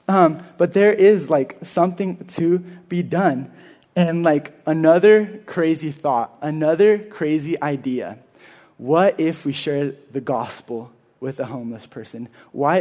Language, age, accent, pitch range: English, 20-39, American, 140-170 Hz